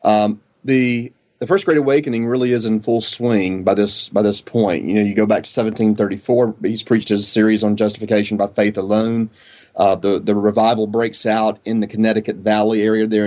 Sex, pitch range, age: male, 105-115 Hz, 30-49